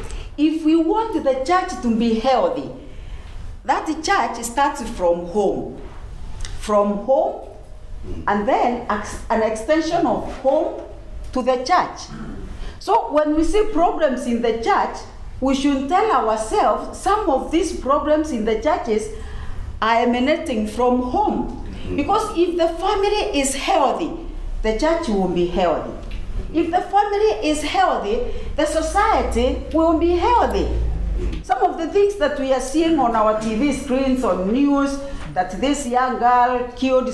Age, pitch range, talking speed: 40-59, 250-345 Hz, 140 wpm